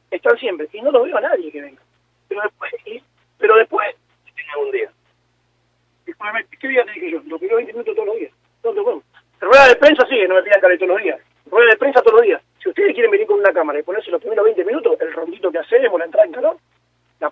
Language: Spanish